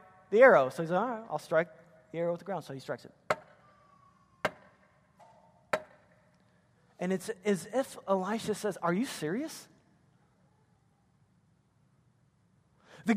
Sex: male